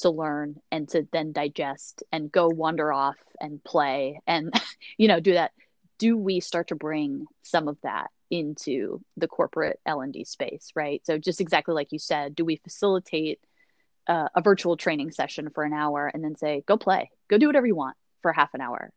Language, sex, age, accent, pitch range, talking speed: English, female, 20-39, American, 160-205 Hz, 195 wpm